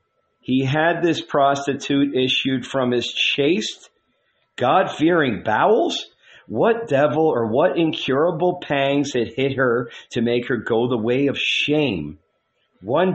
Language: English